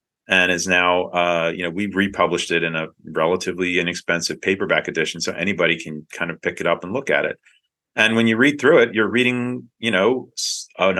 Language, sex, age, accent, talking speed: English, male, 40-59, American, 205 wpm